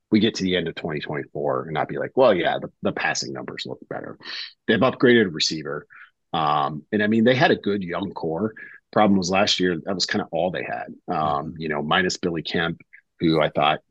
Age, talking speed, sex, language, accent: 40-59, 230 wpm, male, English, American